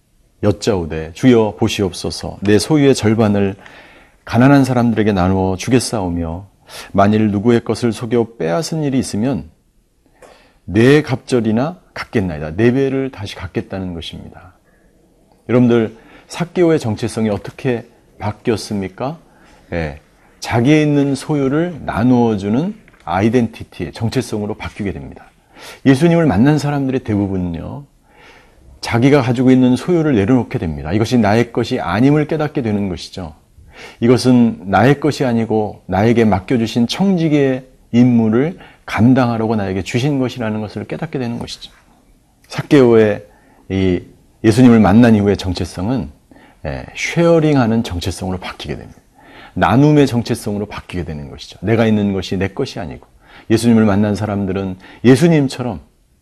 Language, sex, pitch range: Korean, male, 100-130 Hz